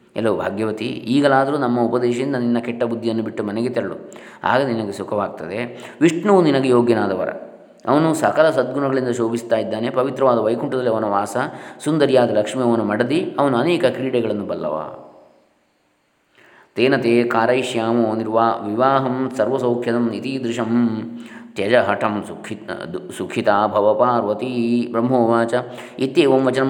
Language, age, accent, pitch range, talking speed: Kannada, 20-39, native, 115-130 Hz, 95 wpm